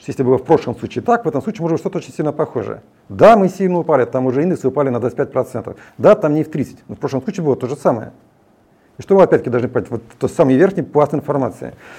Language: Turkish